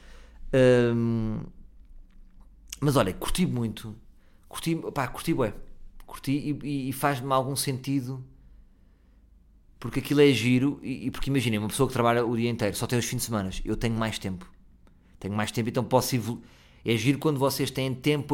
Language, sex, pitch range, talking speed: Portuguese, male, 100-145 Hz, 170 wpm